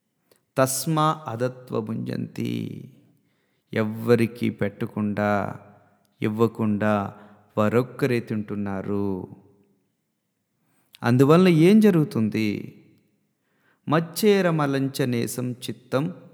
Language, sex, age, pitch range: Telugu, male, 30-49, 105-165 Hz